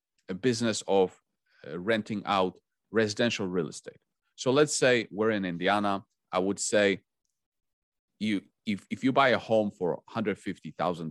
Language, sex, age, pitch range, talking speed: English, male, 30-49, 95-115 Hz, 145 wpm